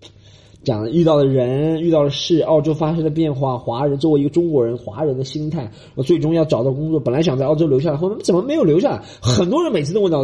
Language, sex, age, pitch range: Chinese, male, 20-39, 105-155 Hz